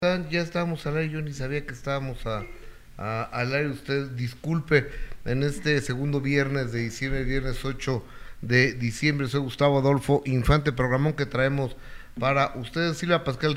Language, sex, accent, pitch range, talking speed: Spanish, male, Mexican, 120-155 Hz, 160 wpm